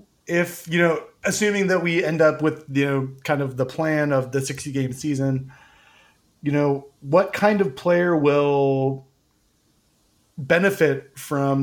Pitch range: 135-160 Hz